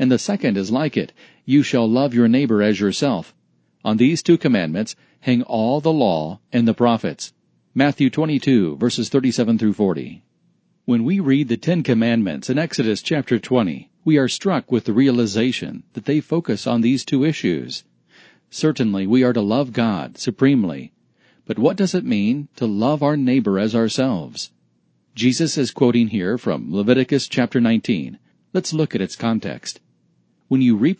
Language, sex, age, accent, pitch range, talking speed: English, male, 40-59, American, 115-145 Hz, 165 wpm